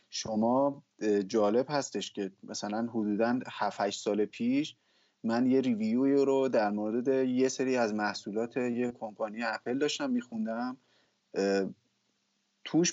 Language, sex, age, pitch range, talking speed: Persian, male, 30-49, 115-155 Hz, 115 wpm